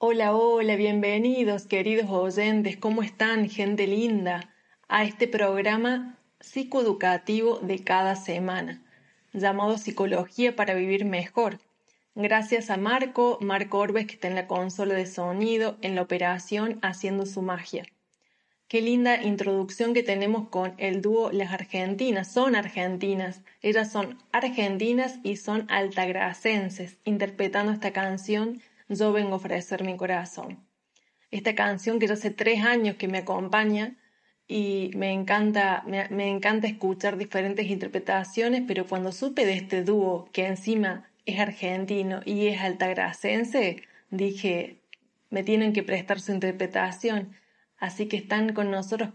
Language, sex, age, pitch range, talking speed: Spanish, female, 20-39, 190-220 Hz, 135 wpm